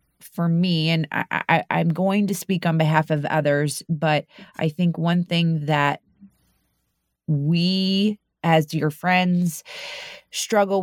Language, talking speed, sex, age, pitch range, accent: English, 135 wpm, female, 30-49, 150-170 Hz, American